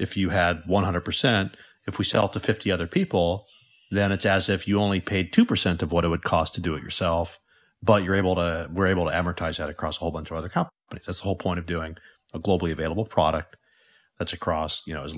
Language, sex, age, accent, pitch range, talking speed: English, male, 40-59, American, 85-110 Hz, 240 wpm